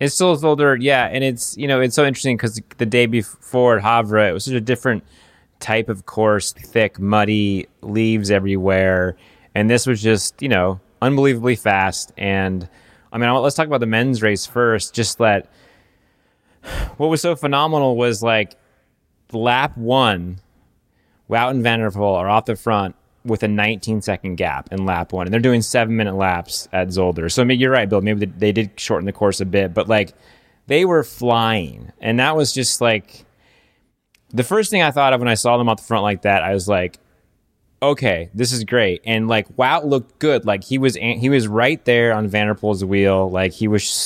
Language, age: English, 20-39